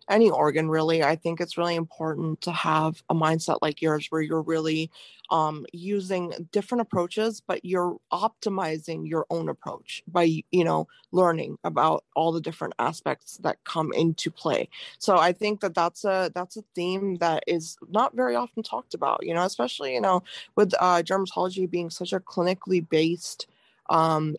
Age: 20-39